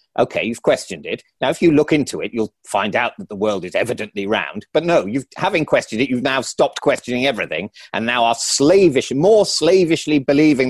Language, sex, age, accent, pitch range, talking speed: English, male, 40-59, British, 125-165 Hz, 210 wpm